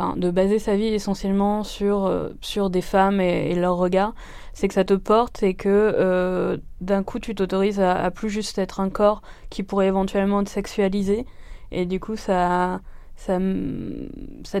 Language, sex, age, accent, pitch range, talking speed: French, female, 20-39, French, 180-210 Hz, 185 wpm